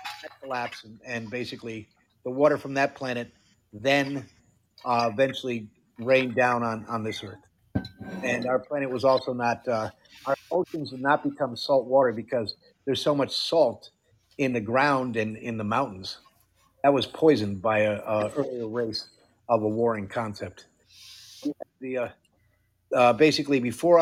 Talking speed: 150 wpm